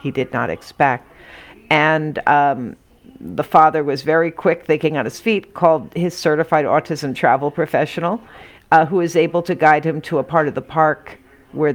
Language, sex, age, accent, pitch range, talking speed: English, female, 50-69, American, 155-180 Hz, 180 wpm